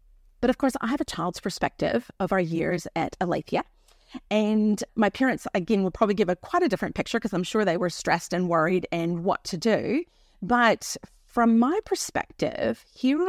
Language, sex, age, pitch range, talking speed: English, female, 30-49, 185-255 Hz, 190 wpm